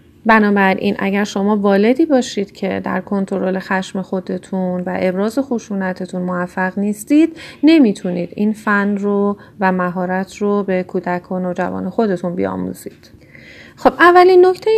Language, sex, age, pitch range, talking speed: Persian, female, 30-49, 185-220 Hz, 125 wpm